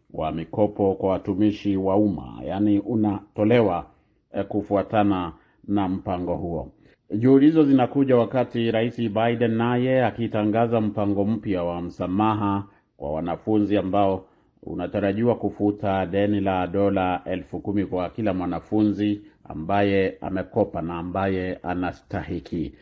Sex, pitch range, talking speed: male, 95-115 Hz, 105 wpm